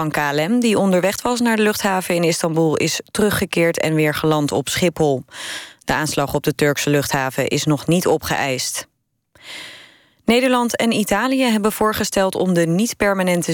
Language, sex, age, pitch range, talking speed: Dutch, female, 20-39, 155-195 Hz, 155 wpm